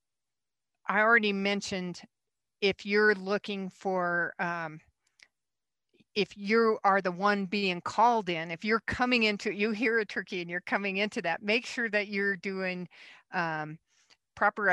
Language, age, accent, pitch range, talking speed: English, 50-69, American, 175-205 Hz, 145 wpm